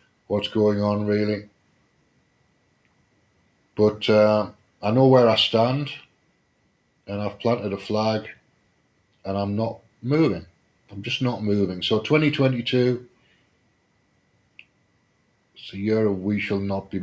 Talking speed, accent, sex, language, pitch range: 120 wpm, British, male, English, 105-125 Hz